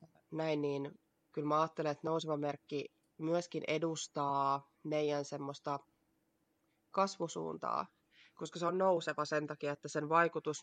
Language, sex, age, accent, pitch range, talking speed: Finnish, female, 20-39, native, 145-170 Hz, 125 wpm